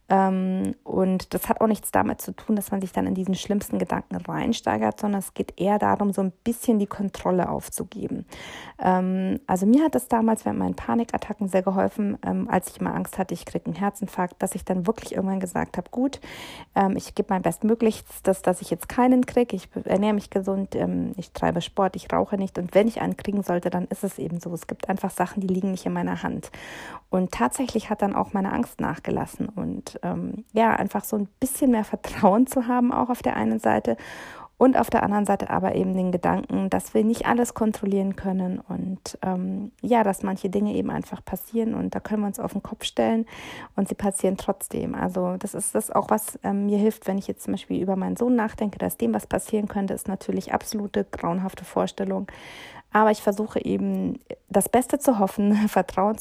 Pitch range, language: 185-220 Hz, German